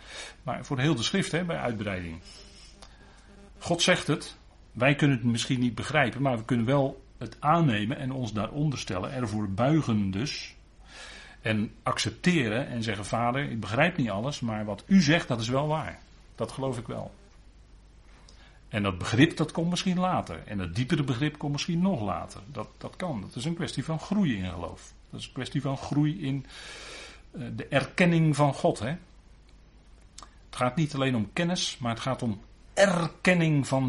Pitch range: 105-150 Hz